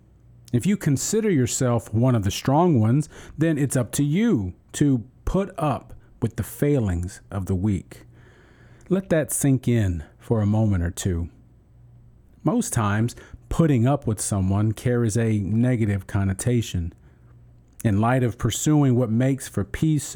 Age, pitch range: 40-59, 110-145 Hz